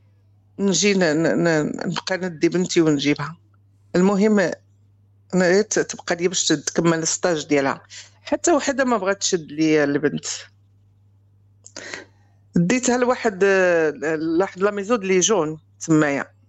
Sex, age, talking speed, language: female, 50-69, 110 wpm, Arabic